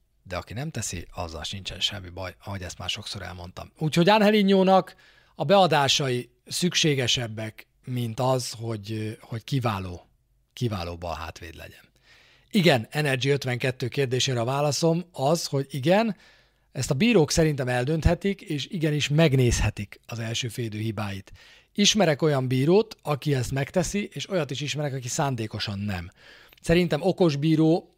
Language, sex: Hungarian, male